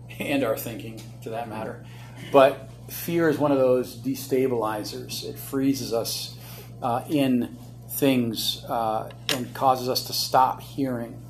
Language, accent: English, American